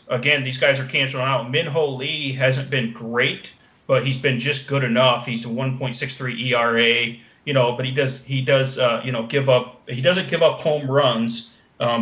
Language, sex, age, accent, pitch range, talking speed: English, male, 30-49, American, 120-135 Hz, 200 wpm